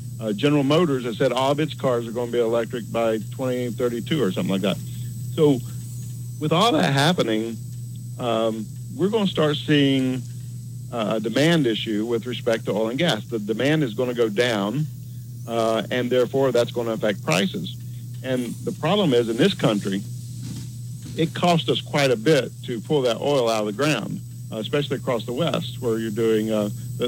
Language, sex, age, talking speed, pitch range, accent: English, male, 50-69, 190 wpm, 120-135 Hz, American